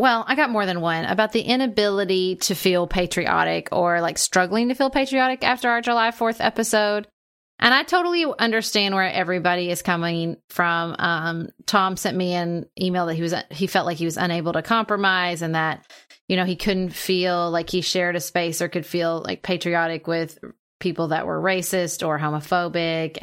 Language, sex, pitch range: English, female, 170-195 Hz